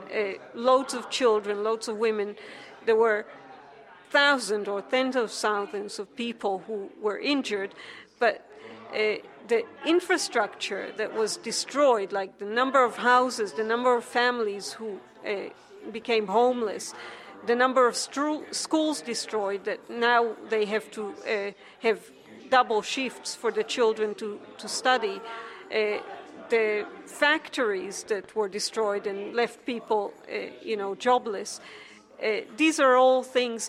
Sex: female